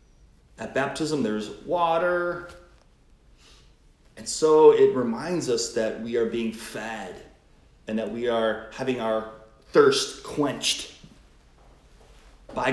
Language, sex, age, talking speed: English, male, 30-49, 110 wpm